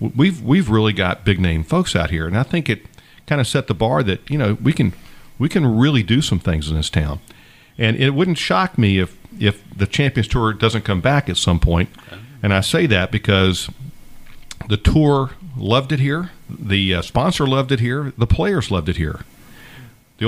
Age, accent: 50-69, American